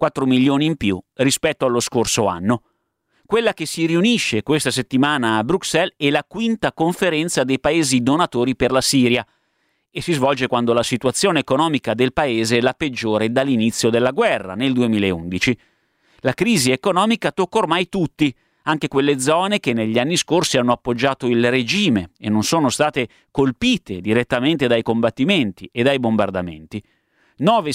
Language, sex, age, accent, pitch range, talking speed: Italian, male, 30-49, native, 120-165 Hz, 155 wpm